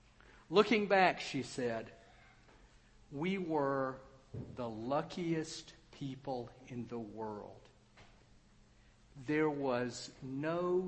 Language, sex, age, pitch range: English, male, 50-69, 115-165 Hz